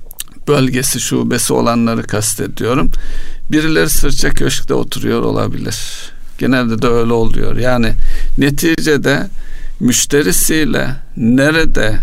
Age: 60-79